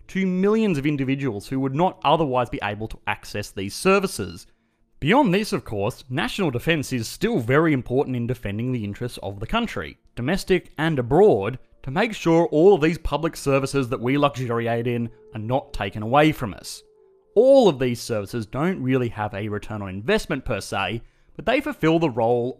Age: 30-49